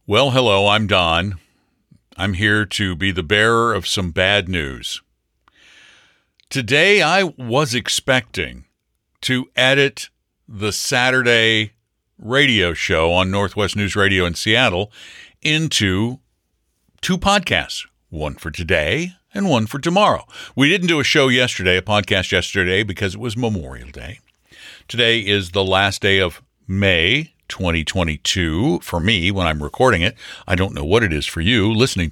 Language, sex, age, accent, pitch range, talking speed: English, male, 60-79, American, 95-125 Hz, 145 wpm